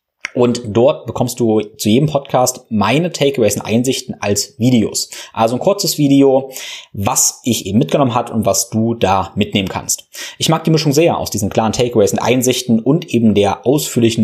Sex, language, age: male, German, 20-39